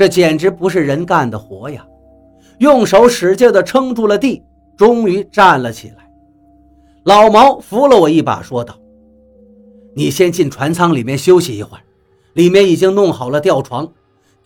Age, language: 50-69, Chinese